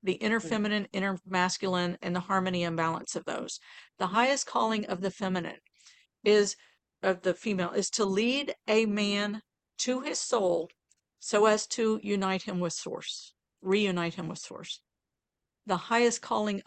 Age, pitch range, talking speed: 50-69, 185-220 Hz, 160 wpm